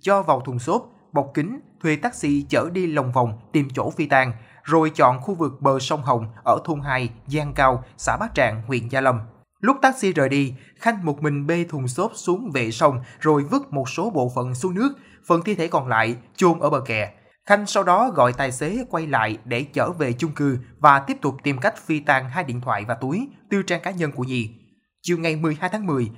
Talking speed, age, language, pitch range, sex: 230 wpm, 20-39, Vietnamese, 125-175 Hz, male